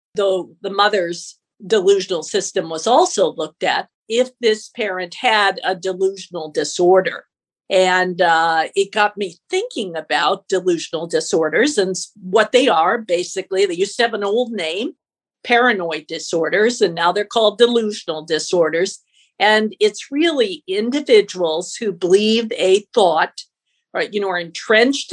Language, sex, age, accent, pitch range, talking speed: English, female, 50-69, American, 180-235 Hz, 140 wpm